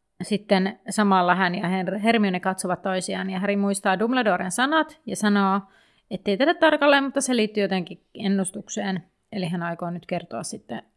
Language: Finnish